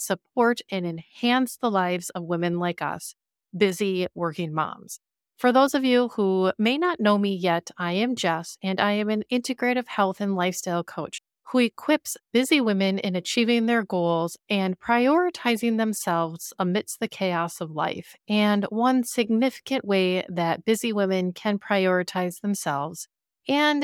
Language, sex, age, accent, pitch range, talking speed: English, female, 30-49, American, 180-235 Hz, 155 wpm